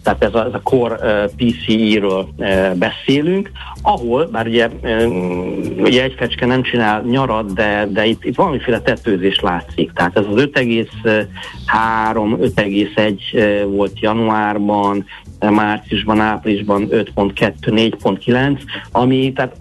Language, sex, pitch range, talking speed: Hungarian, male, 105-125 Hz, 105 wpm